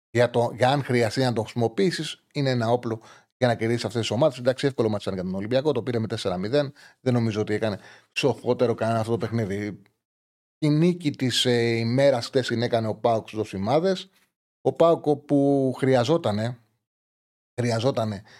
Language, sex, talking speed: Greek, male, 175 wpm